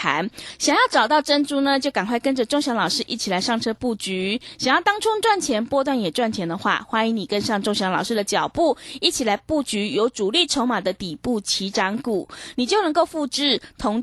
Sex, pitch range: female, 210-290 Hz